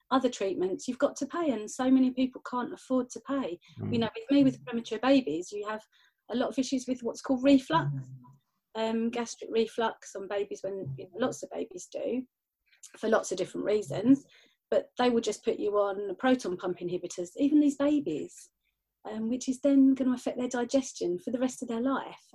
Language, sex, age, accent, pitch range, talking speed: English, female, 30-49, British, 195-260 Hz, 200 wpm